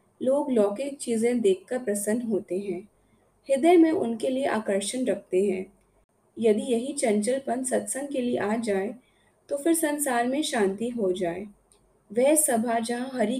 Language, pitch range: Hindi, 200-255 Hz